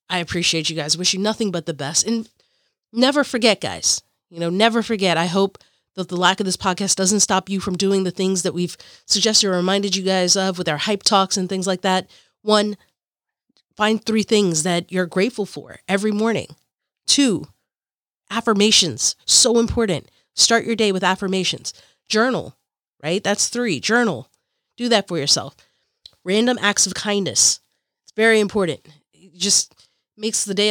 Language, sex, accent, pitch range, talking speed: English, female, American, 180-230 Hz, 170 wpm